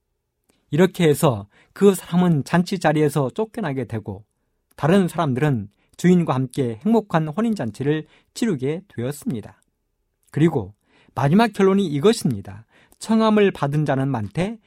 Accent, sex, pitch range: native, male, 120-185 Hz